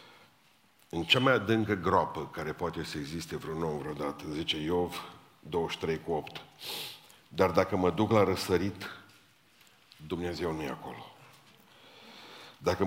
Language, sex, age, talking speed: Romanian, male, 50-69, 120 wpm